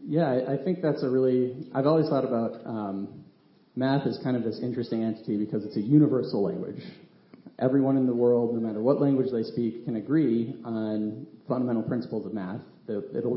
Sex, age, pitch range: male, 30-49, 115-135 Hz